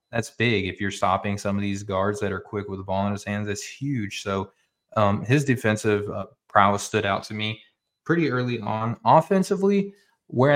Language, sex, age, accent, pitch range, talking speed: English, male, 20-39, American, 95-105 Hz, 200 wpm